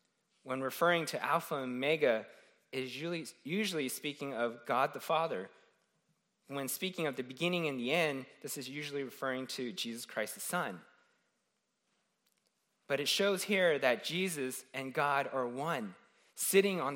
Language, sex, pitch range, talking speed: English, male, 125-195 Hz, 150 wpm